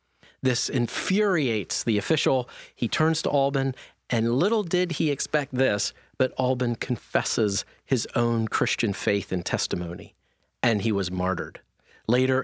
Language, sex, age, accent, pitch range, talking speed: English, male, 40-59, American, 110-150 Hz, 135 wpm